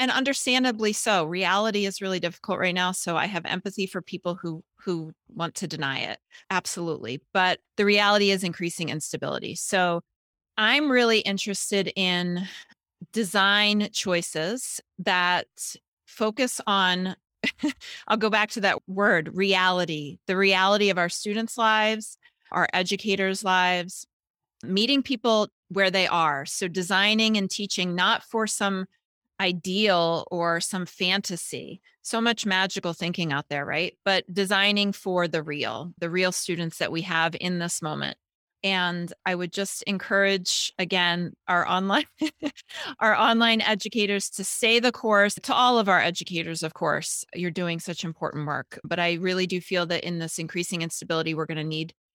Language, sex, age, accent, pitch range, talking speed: English, female, 30-49, American, 170-210 Hz, 150 wpm